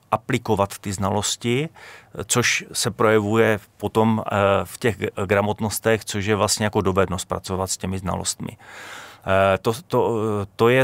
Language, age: Czech, 30-49